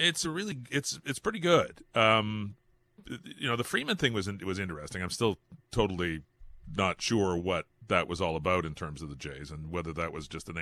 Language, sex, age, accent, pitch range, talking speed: English, male, 40-59, American, 80-100 Hz, 215 wpm